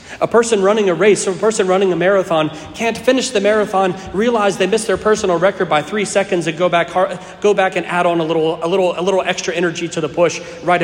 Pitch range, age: 130-180 Hz, 40-59